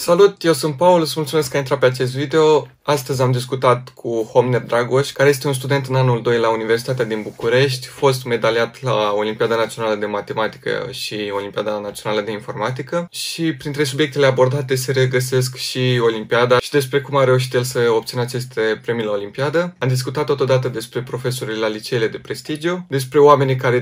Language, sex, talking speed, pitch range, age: Romanian, male, 185 wpm, 115-140 Hz, 20-39